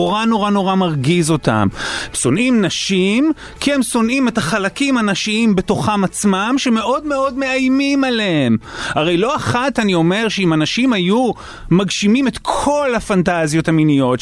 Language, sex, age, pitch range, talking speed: Hebrew, male, 30-49, 155-245 Hz, 140 wpm